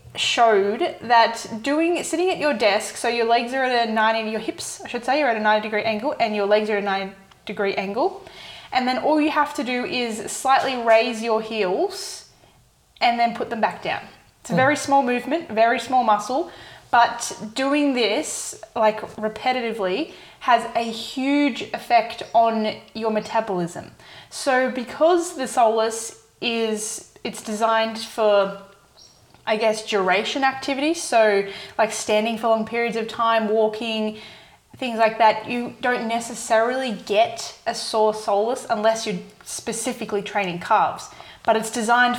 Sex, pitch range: female, 210-255 Hz